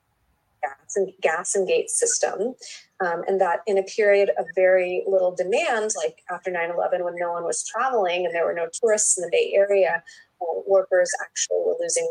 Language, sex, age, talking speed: English, female, 30-49, 175 wpm